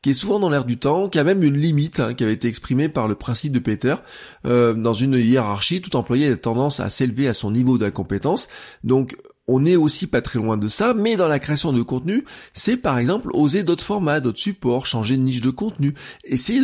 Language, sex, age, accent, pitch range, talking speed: French, male, 20-39, French, 120-165 Hz, 235 wpm